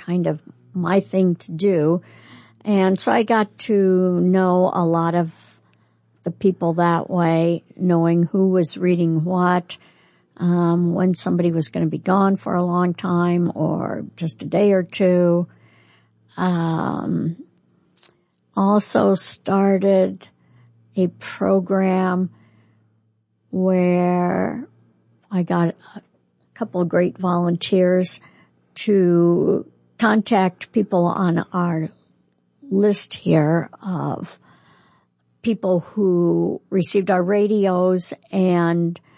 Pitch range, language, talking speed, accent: 170-190 Hz, English, 105 wpm, American